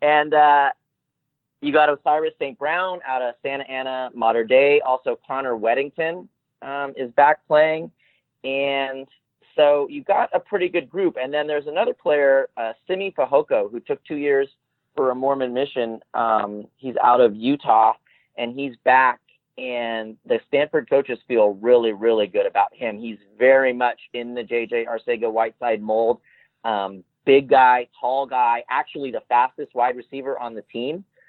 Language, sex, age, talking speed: English, male, 30-49, 160 wpm